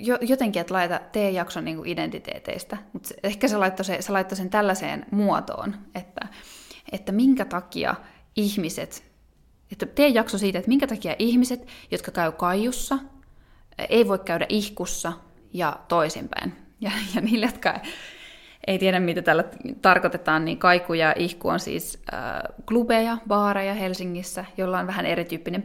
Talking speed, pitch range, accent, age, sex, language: 135 wpm, 180-225 Hz, native, 20-39, female, Finnish